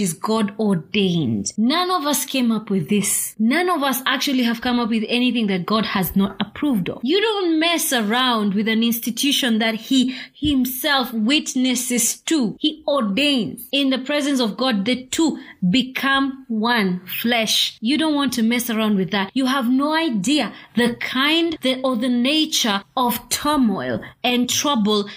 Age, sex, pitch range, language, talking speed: 20-39, female, 215-280 Hz, English, 170 wpm